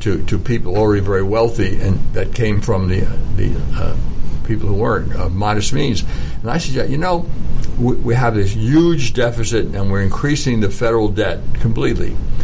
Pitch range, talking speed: 105-125 Hz, 190 wpm